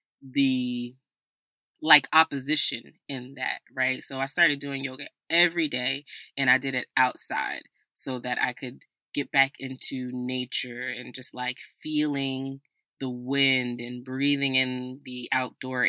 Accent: American